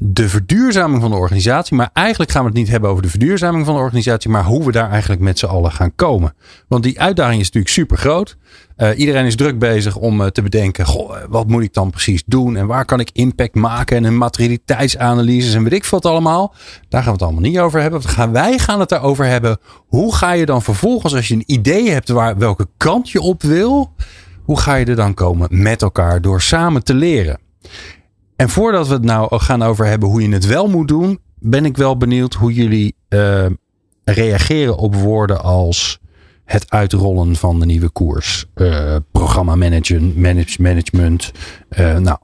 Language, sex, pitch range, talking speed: Dutch, male, 95-130 Hz, 205 wpm